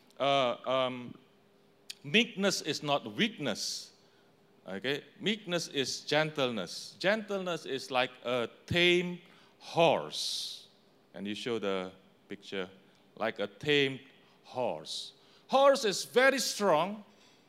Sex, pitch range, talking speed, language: male, 130-210 Hz, 100 wpm, English